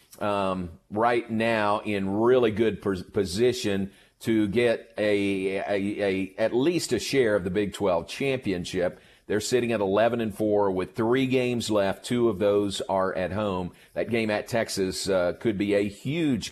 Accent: American